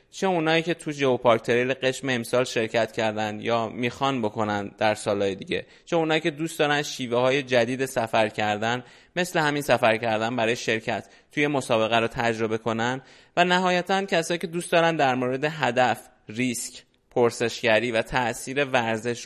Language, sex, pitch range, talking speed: Persian, male, 115-145 Hz, 155 wpm